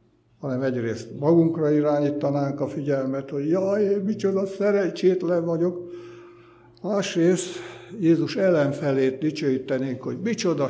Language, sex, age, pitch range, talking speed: Hungarian, male, 60-79, 125-170 Hz, 100 wpm